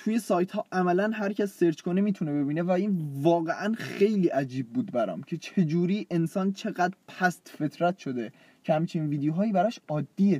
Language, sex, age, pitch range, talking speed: Persian, male, 20-39, 140-200 Hz, 175 wpm